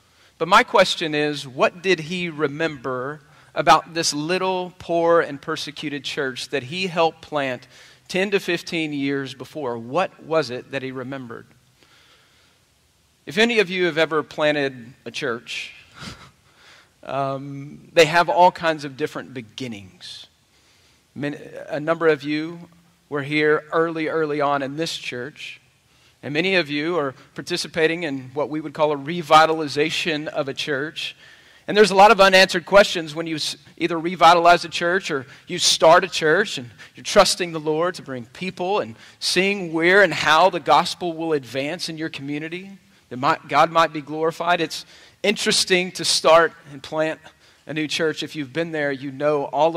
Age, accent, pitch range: 40-59, American, 140-170 Hz